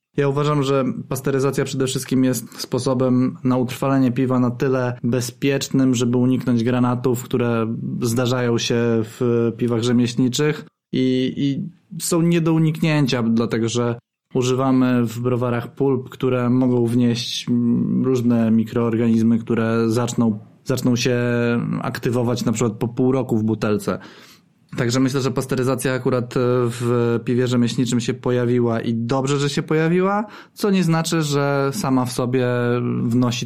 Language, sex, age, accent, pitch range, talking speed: Polish, male, 20-39, native, 120-130 Hz, 135 wpm